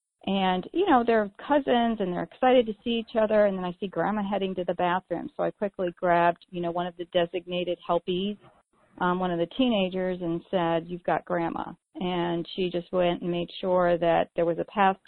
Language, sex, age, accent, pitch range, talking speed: English, female, 40-59, American, 170-200 Hz, 215 wpm